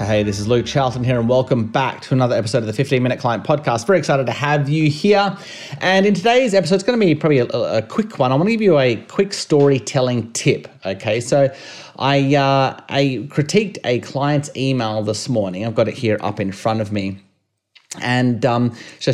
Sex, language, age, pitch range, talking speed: male, English, 30-49, 105-135 Hz, 215 wpm